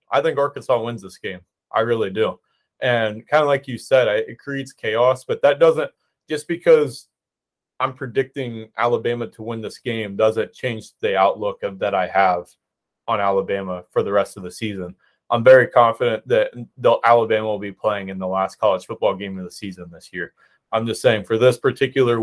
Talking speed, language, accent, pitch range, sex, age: 190 wpm, English, American, 105-125 Hz, male, 30-49